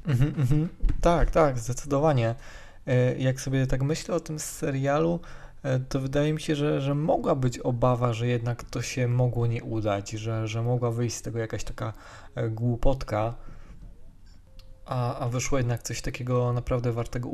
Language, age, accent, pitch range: Polish, 20-39, native, 115-130 Hz